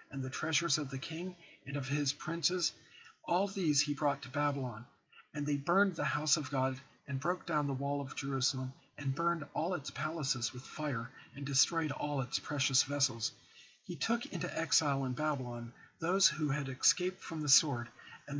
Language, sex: English, male